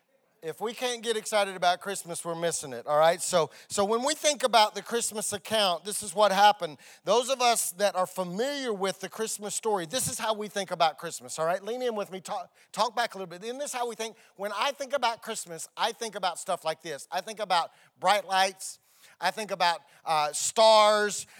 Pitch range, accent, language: 190-245 Hz, American, English